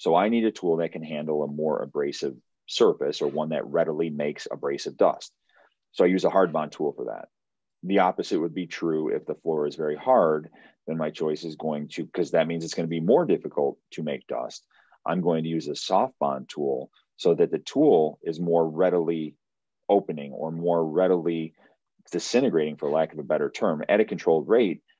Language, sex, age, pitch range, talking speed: English, male, 40-59, 80-95 Hz, 205 wpm